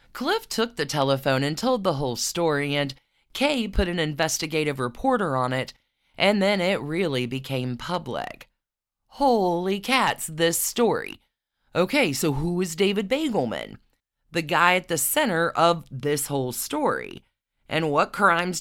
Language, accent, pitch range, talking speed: English, American, 145-205 Hz, 145 wpm